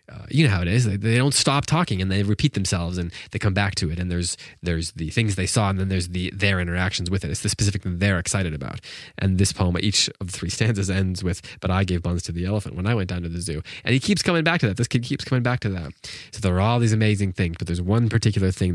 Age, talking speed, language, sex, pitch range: 20-39, 300 wpm, English, male, 90-110 Hz